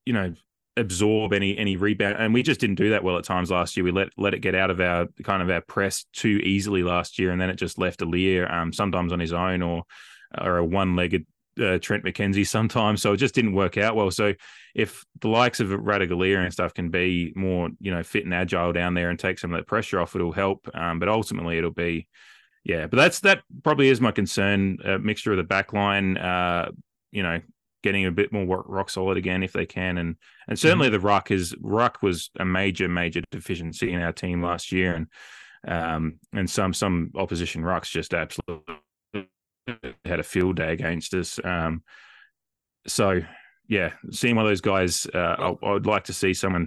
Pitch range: 85-100 Hz